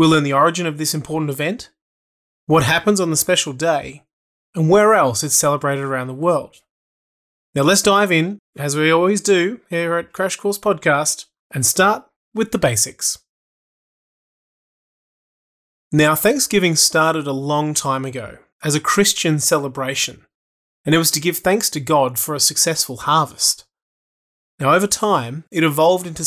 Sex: male